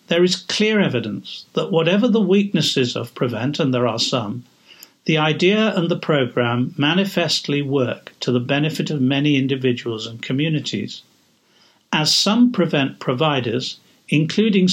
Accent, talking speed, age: British, 140 wpm, 60-79